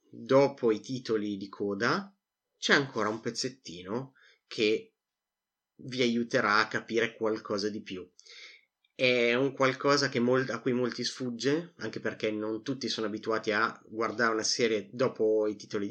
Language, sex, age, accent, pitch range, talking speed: Italian, male, 30-49, native, 105-135 Hz, 140 wpm